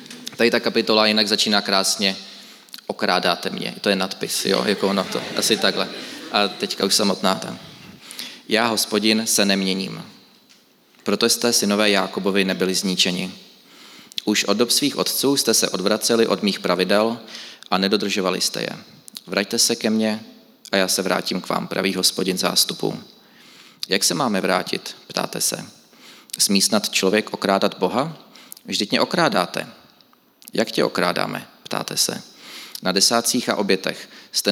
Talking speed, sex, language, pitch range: 145 wpm, male, Czech, 95-110 Hz